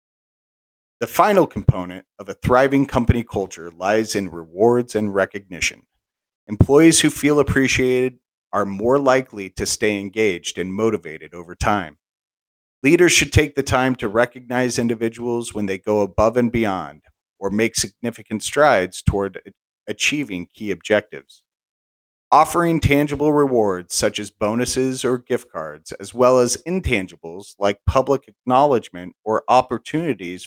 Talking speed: 130 wpm